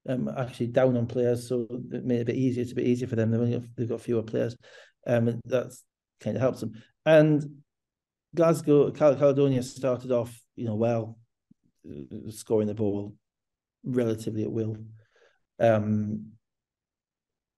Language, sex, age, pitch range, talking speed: English, male, 40-59, 110-125 Hz, 160 wpm